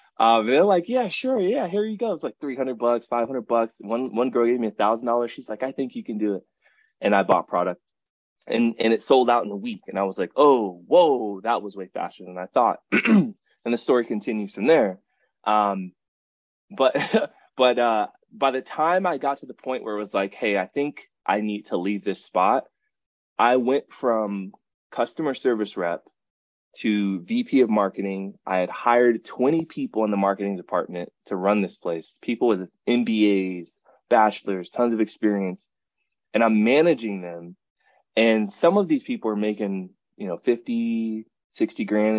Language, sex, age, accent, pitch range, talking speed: English, male, 20-39, American, 100-125 Hz, 190 wpm